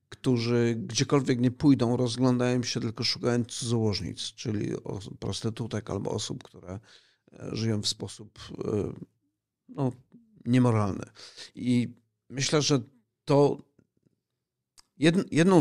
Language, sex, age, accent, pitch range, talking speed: Polish, male, 50-69, native, 110-130 Hz, 90 wpm